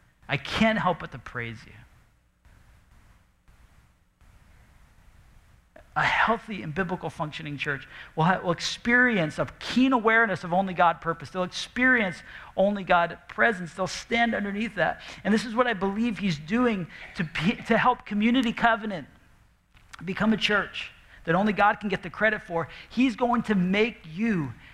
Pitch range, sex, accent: 165-225 Hz, male, American